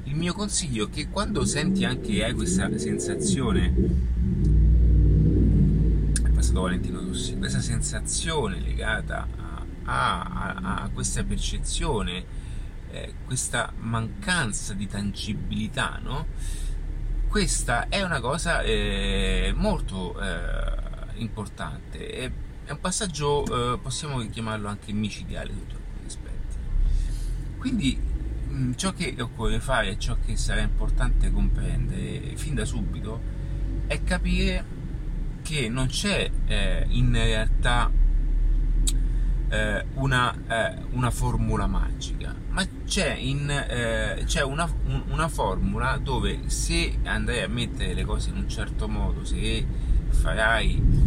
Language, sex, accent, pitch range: Italian, male, native, 95-130 Hz